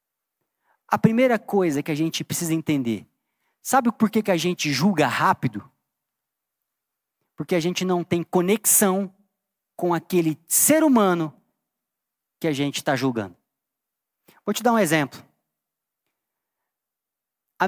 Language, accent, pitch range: Portuguese, Brazilian, 165-230 Hz